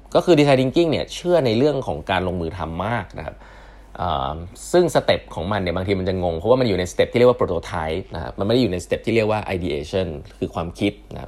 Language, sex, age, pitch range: Thai, male, 20-39, 90-125 Hz